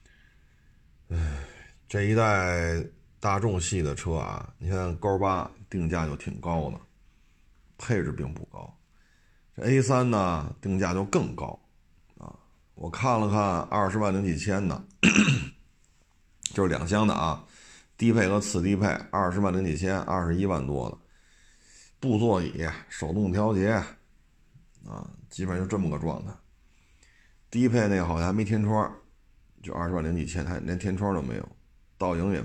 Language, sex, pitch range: Chinese, male, 80-100 Hz